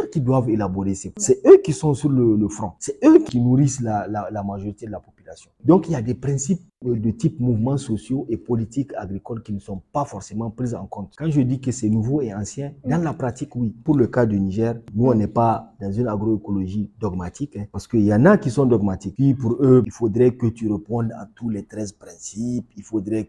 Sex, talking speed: male, 240 wpm